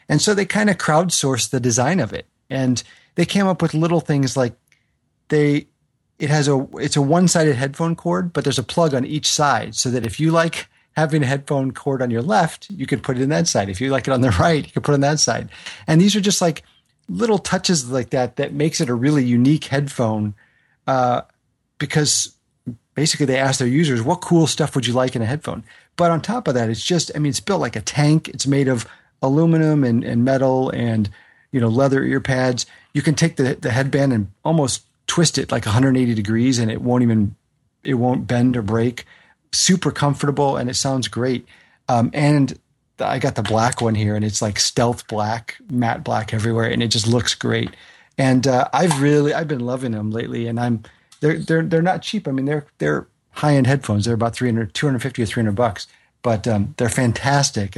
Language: English